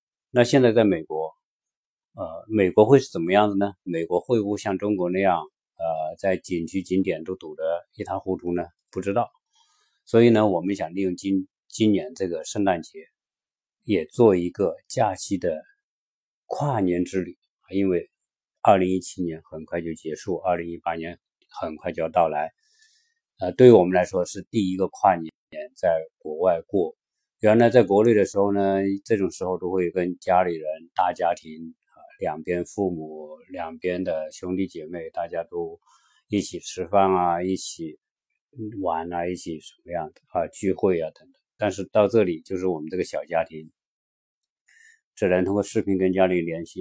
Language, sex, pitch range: Chinese, male, 90-110 Hz